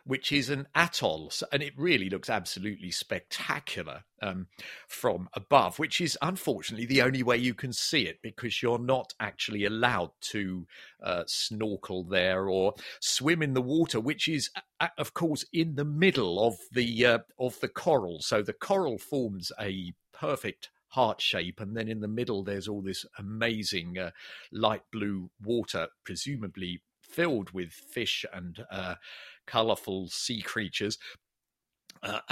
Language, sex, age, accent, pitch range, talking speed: English, male, 50-69, British, 105-145 Hz, 150 wpm